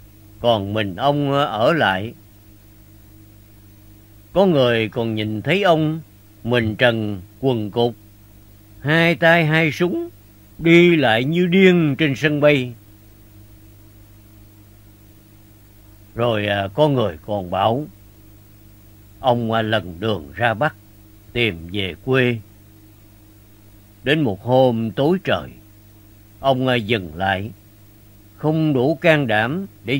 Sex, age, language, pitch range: male, 50-69, Vietnamese, 105-135 Hz